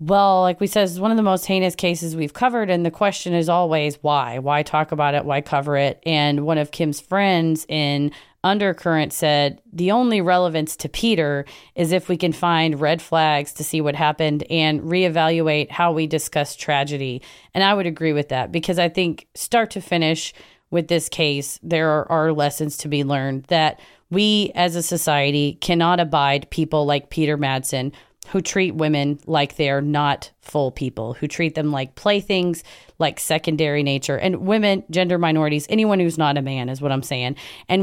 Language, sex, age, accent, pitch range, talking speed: English, female, 30-49, American, 145-180 Hz, 190 wpm